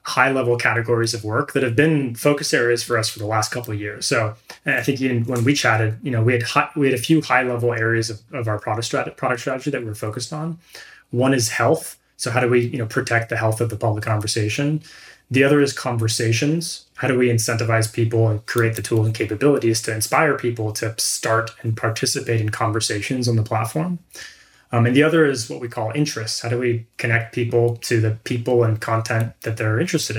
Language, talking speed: English, 220 wpm